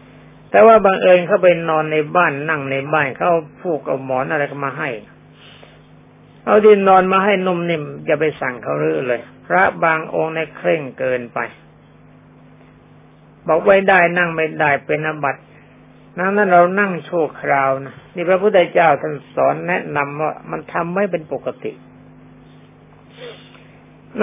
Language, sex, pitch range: Thai, male, 140-180 Hz